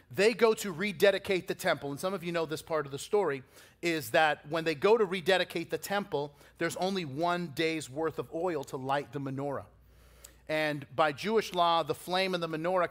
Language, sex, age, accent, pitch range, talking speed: English, male, 40-59, American, 135-170 Hz, 210 wpm